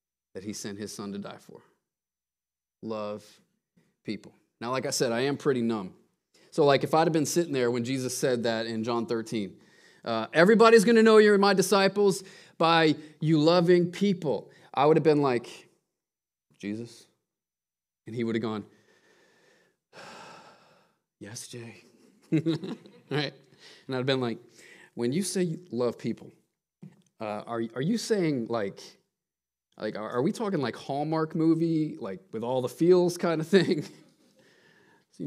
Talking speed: 155 wpm